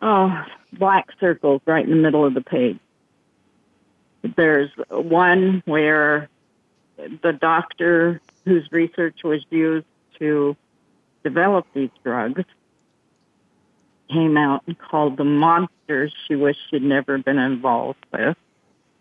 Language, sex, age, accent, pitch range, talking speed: English, female, 60-79, American, 150-175 Hz, 115 wpm